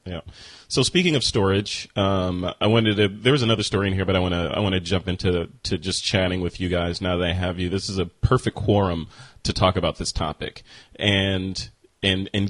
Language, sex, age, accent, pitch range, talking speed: English, male, 30-49, American, 100-120 Hz, 225 wpm